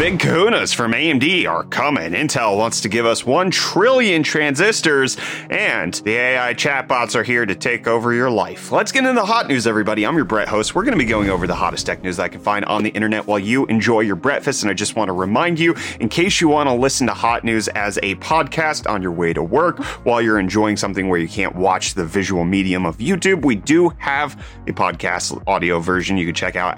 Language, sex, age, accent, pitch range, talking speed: English, male, 30-49, American, 100-135 Hz, 230 wpm